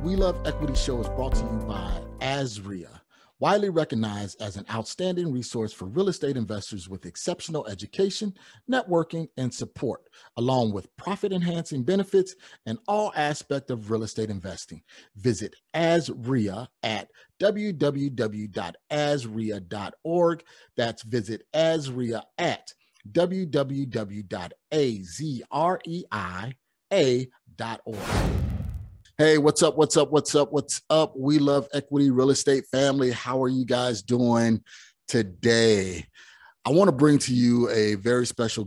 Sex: male